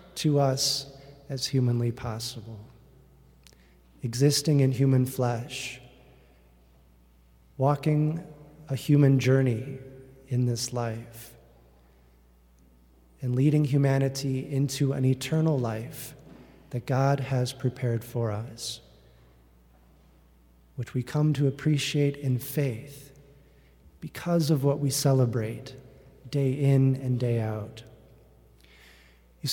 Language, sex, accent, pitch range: English, male, American, 110-145 Hz